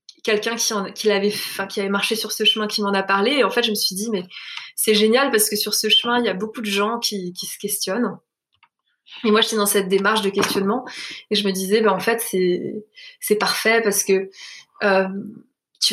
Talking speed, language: 235 wpm, French